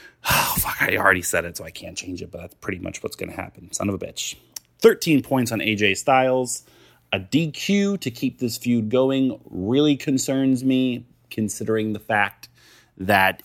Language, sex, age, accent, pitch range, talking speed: English, male, 30-49, American, 95-130 Hz, 185 wpm